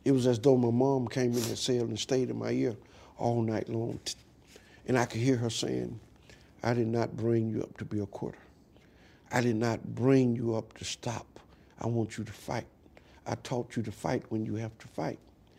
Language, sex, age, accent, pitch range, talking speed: English, male, 60-79, American, 110-135 Hz, 220 wpm